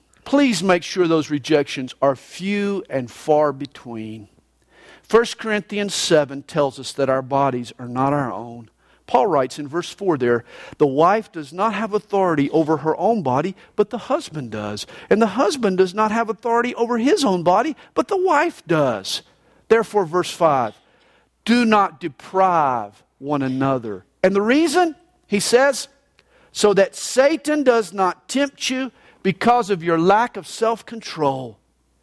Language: English